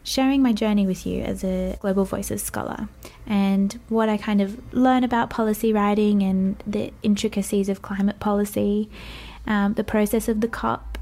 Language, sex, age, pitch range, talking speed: English, female, 20-39, 195-220 Hz, 170 wpm